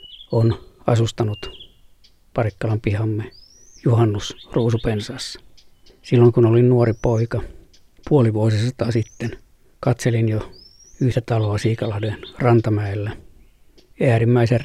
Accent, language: native, Finnish